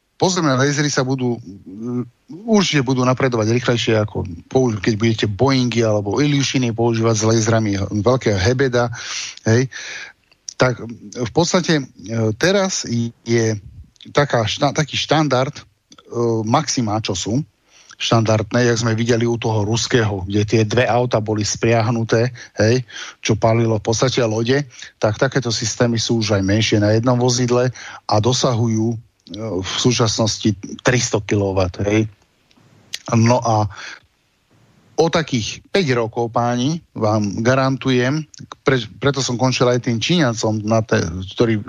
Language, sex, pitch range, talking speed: Slovak, male, 110-125 Hz, 120 wpm